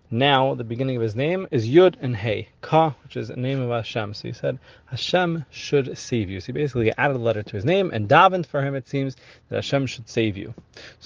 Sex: male